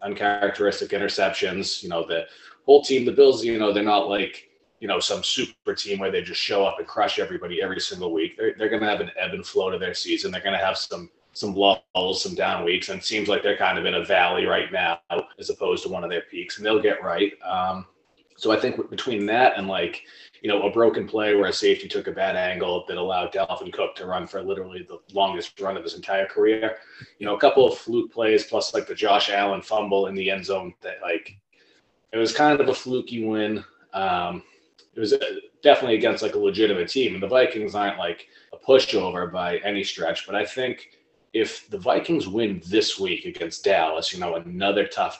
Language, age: English, 20-39